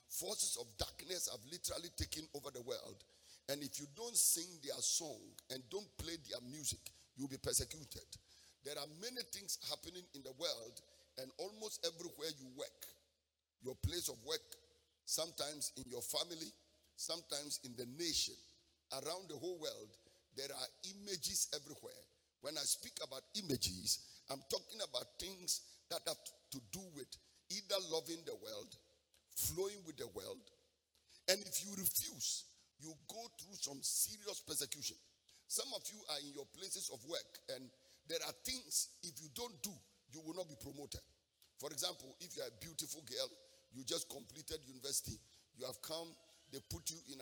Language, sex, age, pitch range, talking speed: English, male, 50-69, 135-195 Hz, 165 wpm